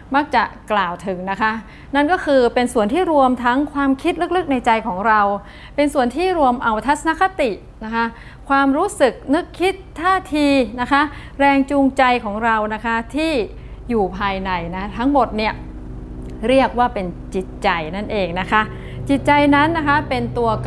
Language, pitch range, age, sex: Thai, 200-275 Hz, 30-49, female